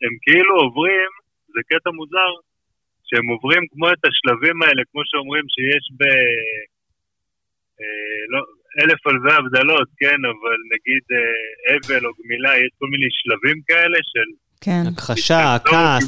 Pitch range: 125-165 Hz